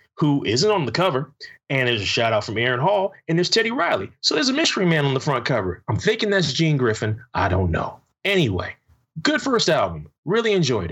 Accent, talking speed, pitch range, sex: American, 220 wpm, 125-185 Hz, male